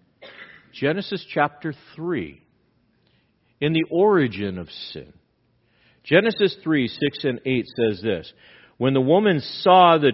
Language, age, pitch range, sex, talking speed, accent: English, 50-69, 115-155 Hz, male, 120 wpm, American